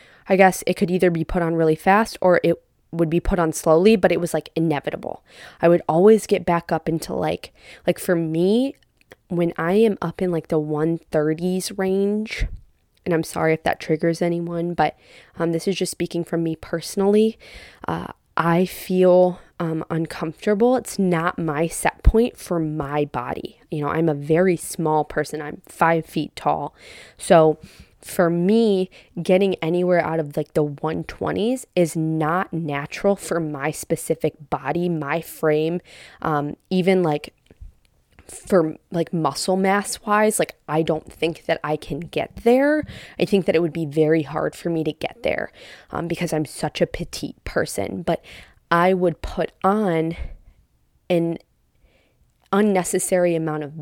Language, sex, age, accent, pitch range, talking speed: English, female, 20-39, American, 155-185 Hz, 165 wpm